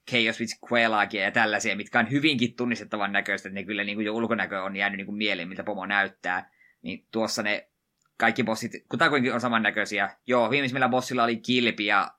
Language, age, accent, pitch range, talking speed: Finnish, 20-39, native, 100-120 Hz, 180 wpm